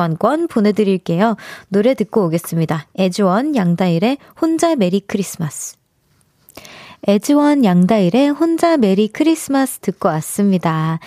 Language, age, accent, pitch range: Korean, 20-39, native, 185-270 Hz